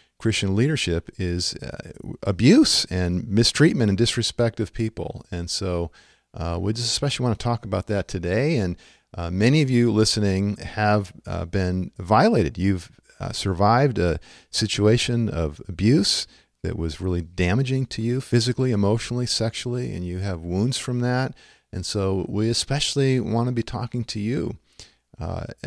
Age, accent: 40-59, American